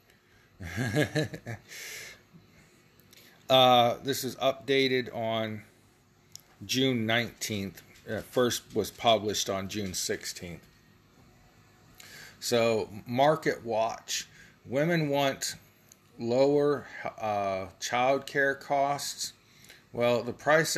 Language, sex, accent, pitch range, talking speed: English, male, American, 110-130 Hz, 80 wpm